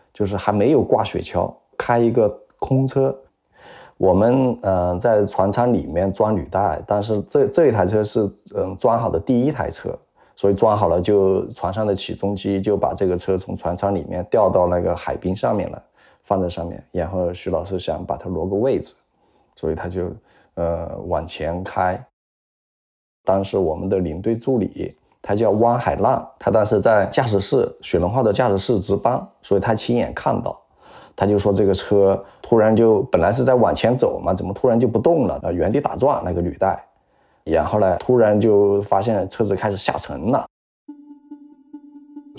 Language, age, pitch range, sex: Chinese, 20-39, 95-120 Hz, male